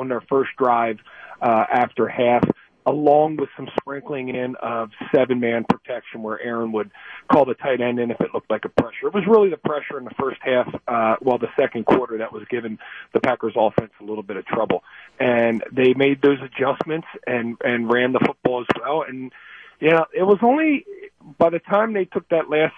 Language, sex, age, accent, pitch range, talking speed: English, male, 40-59, American, 130-170 Hz, 210 wpm